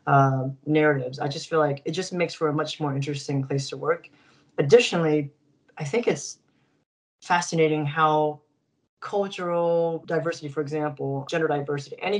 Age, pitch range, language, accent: 30-49, 145-160 Hz, English, American